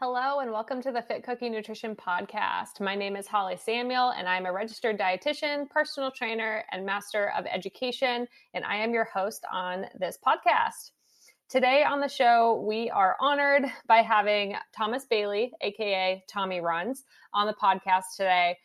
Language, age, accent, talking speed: English, 20-39, American, 165 wpm